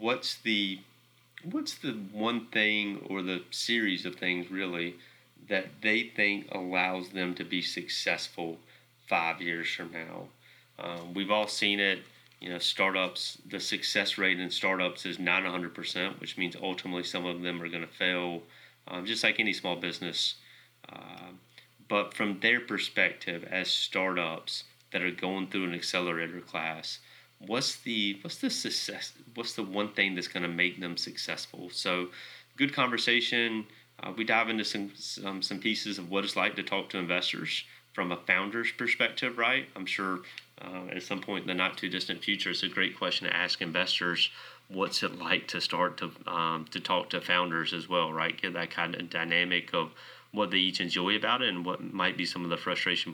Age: 30-49